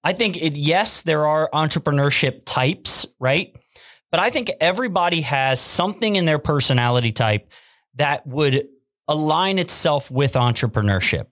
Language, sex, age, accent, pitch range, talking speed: English, male, 30-49, American, 135-170 Hz, 135 wpm